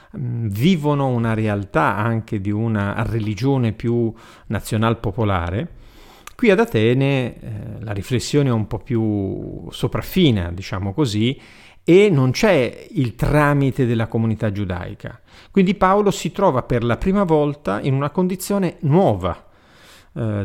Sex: male